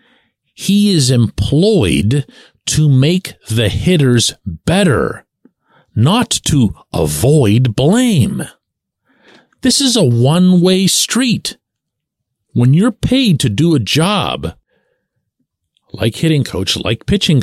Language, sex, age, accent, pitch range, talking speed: English, male, 50-69, American, 115-165 Hz, 100 wpm